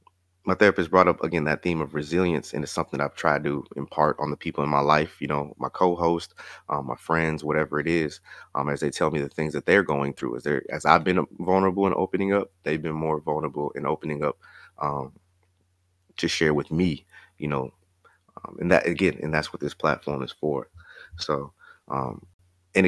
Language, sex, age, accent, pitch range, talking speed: English, male, 30-49, American, 75-90 Hz, 205 wpm